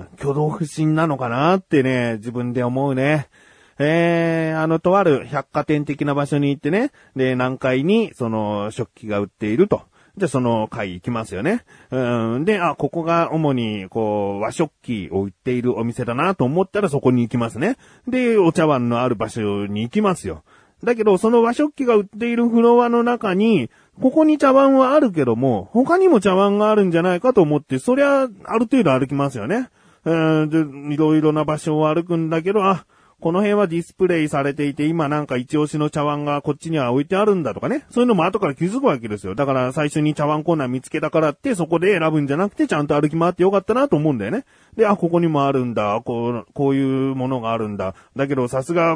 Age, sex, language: 40-59, male, Japanese